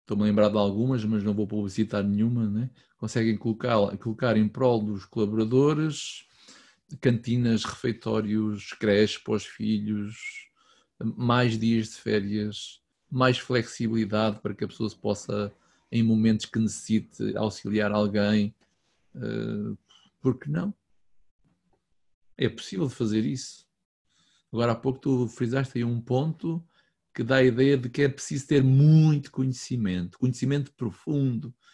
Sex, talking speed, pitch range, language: male, 130 wpm, 110-140 Hz, Portuguese